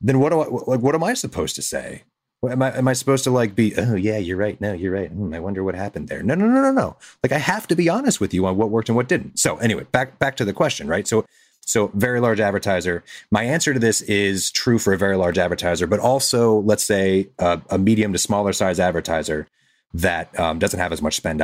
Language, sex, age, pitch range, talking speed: English, male, 30-49, 90-120 Hz, 265 wpm